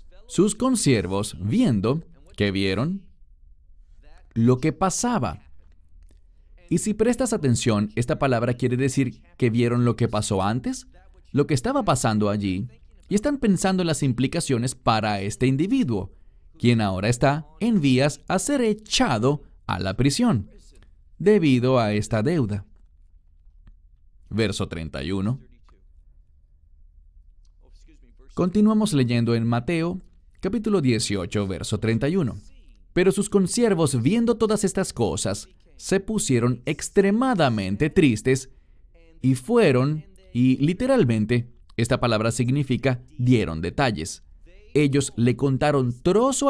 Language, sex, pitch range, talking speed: English, male, 95-145 Hz, 110 wpm